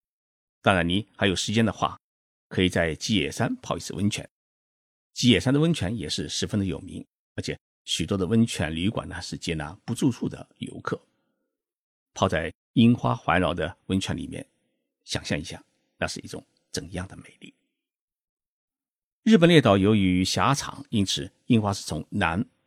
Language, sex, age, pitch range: Chinese, male, 50-69, 90-125 Hz